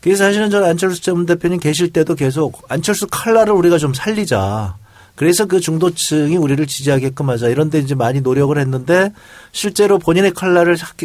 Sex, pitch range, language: male, 125-175 Hz, Korean